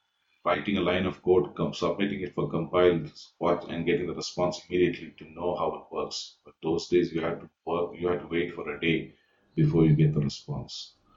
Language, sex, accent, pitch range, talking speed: English, male, Indian, 75-90 Hz, 195 wpm